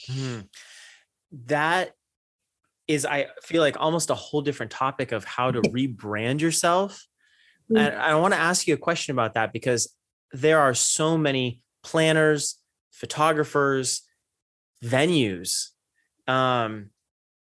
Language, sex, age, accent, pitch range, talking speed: English, male, 30-49, American, 120-160 Hz, 120 wpm